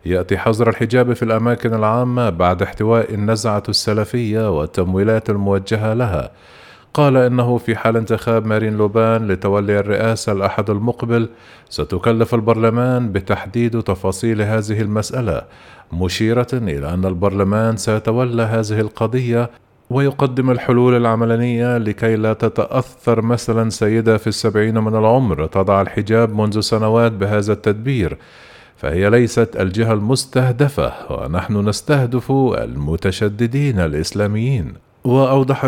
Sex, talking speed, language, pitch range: male, 110 wpm, Arabic, 105-120 Hz